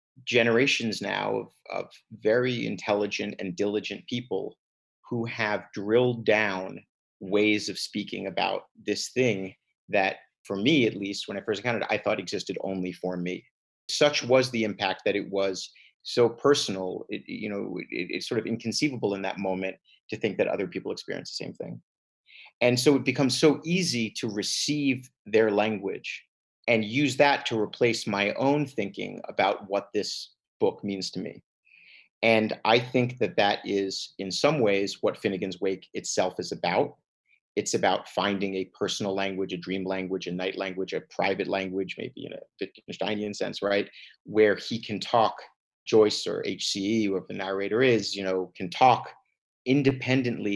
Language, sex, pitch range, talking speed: English, male, 95-120 Hz, 165 wpm